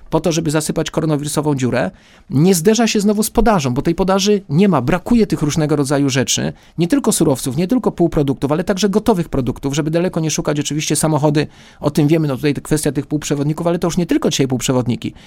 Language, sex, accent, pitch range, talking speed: Polish, male, native, 145-200 Hz, 210 wpm